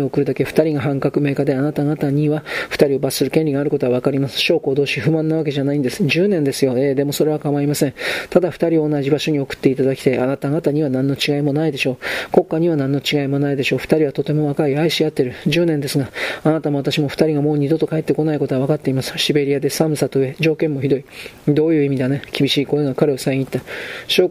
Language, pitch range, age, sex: Japanese, 140-155 Hz, 40-59, male